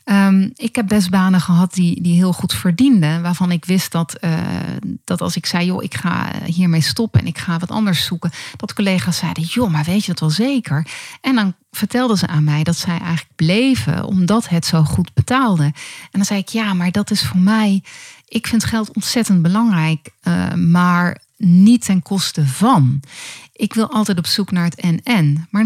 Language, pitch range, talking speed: Dutch, 165-210 Hz, 200 wpm